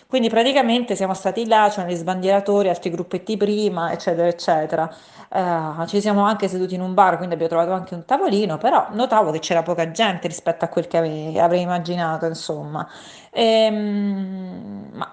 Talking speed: 175 wpm